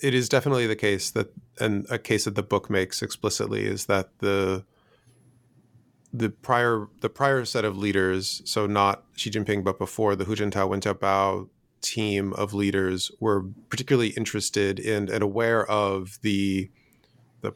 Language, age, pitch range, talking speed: English, 30-49, 100-115 Hz, 160 wpm